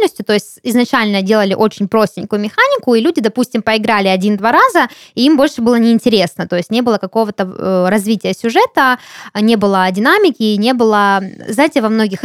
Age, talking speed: 20-39, 160 wpm